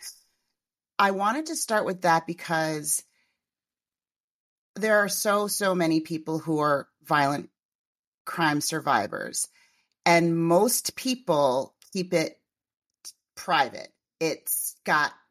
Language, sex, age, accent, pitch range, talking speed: English, female, 30-49, American, 155-185 Hz, 100 wpm